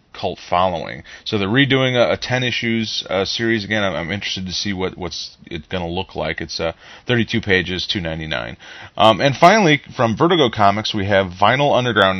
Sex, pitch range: male, 95-115 Hz